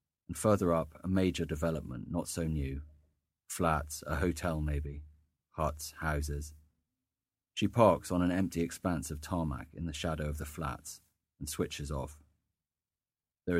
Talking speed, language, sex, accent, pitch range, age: 145 wpm, English, male, British, 75-85 Hz, 30-49